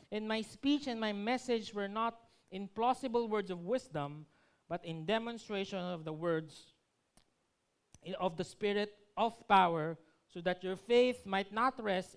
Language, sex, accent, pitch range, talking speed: Filipino, male, native, 180-255 Hz, 155 wpm